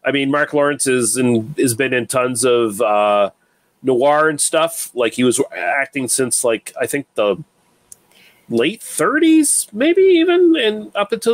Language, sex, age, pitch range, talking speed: English, male, 40-59, 120-155 Hz, 155 wpm